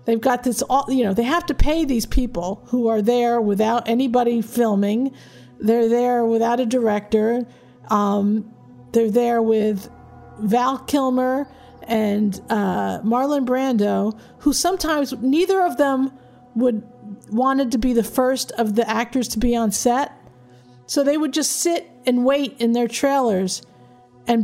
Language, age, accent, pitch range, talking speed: English, 50-69, American, 210-260 Hz, 150 wpm